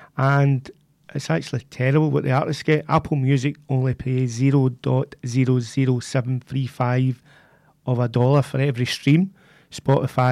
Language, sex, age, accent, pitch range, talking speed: English, male, 30-49, British, 130-150 Hz, 150 wpm